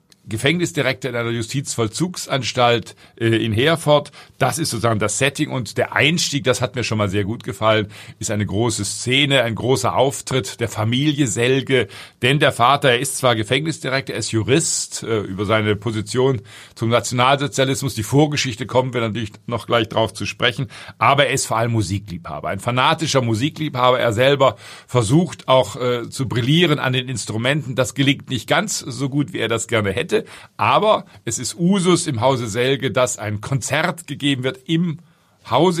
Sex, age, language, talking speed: male, 50-69, German, 170 wpm